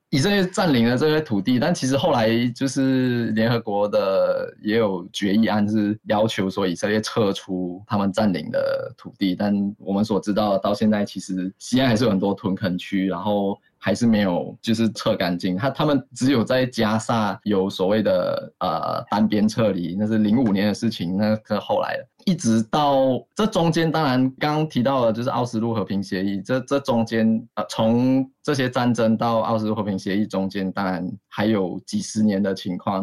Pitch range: 100-125 Hz